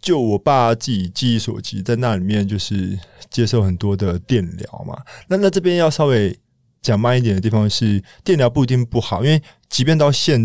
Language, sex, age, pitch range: Chinese, male, 20-39, 95-120 Hz